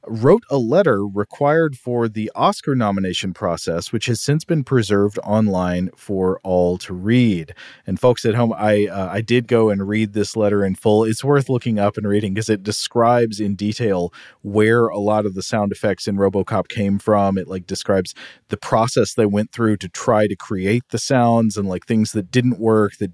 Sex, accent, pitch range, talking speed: male, American, 100-125 Hz, 200 wpm